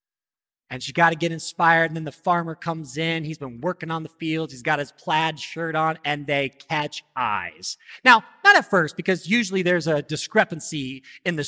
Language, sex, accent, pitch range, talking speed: English, male, American, 145-195 Hz, 205 wpm